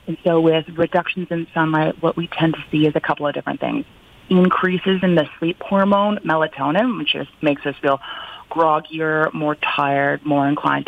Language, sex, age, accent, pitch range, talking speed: English, female, 30-49, American, 150-180 Hz, 175 wpm